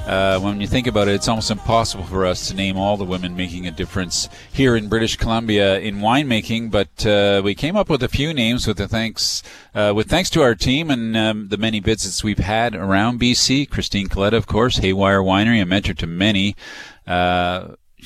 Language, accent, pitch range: English, American, 95-115 Hz